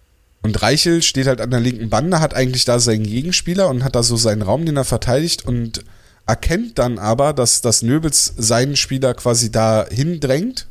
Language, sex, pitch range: German, male, 105-130 Hz